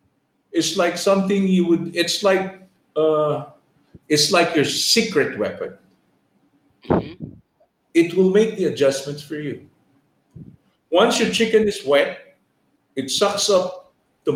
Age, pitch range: 50-69, 160-215 Hz